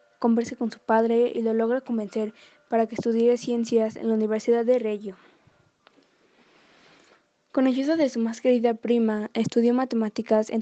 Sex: female